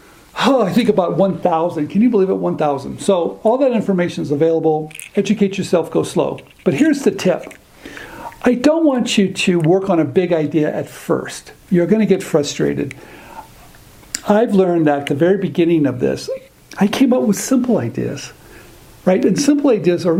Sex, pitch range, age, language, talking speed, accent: male, 165-215 Hz, 60-79, English, 180 wpm, American